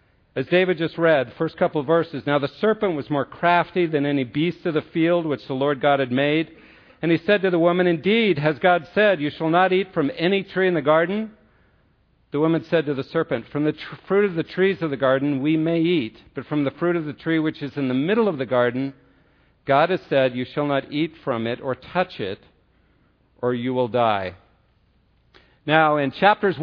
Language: English